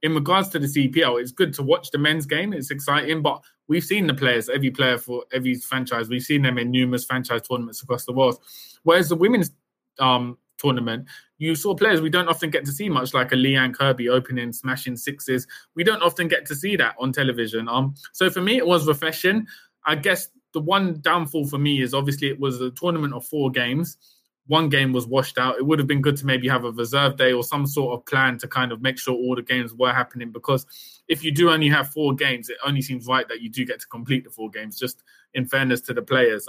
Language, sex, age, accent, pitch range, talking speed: English, male, 20-39, British, 130-160 Hz, 240 wpm